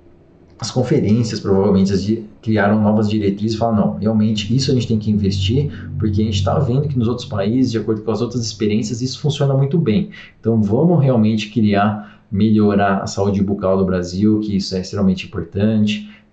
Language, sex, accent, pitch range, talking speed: Portuguese, male, Brazilian, 105-140 Hz, 185 wpm